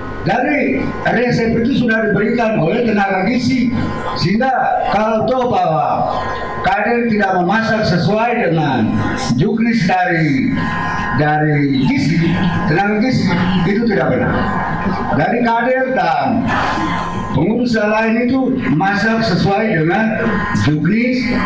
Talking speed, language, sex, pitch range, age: 100 wpm, Indonesian, male, 185-245 Hz, 50-69